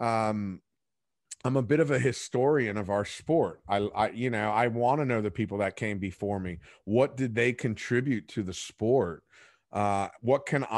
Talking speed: 190 wpm